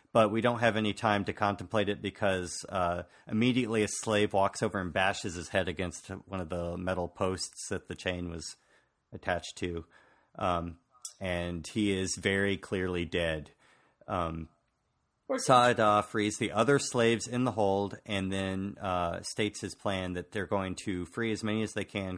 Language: English